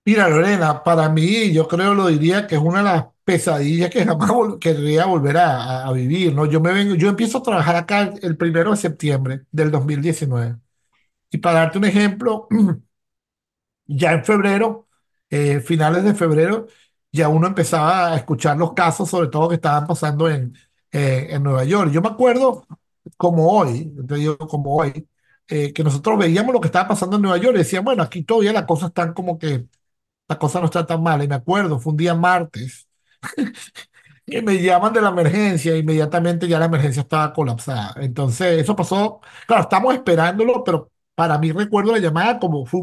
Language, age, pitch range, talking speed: Spanish, 50-69, 150-185 Hz, 185 wpm